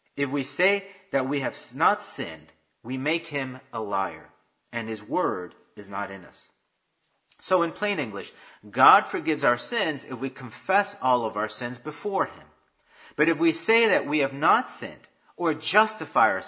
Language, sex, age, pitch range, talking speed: English, male, 40-59, 125-165 Hz, 180 wpm